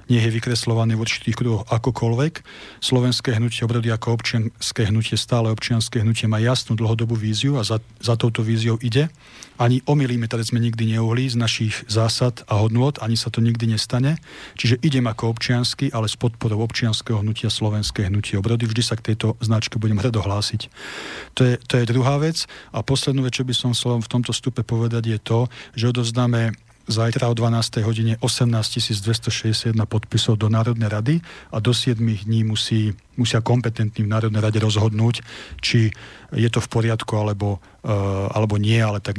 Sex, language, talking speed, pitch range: male, Slovak, 175 wpm, 110-120 Hz